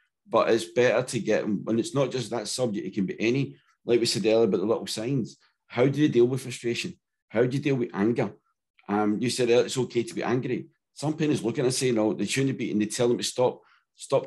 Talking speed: 255 wpm